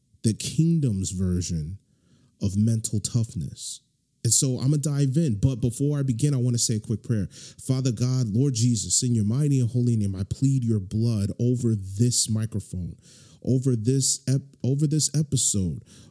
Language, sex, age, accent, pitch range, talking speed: English, male, 30-49, American, 105-135 Hz, 170 wpm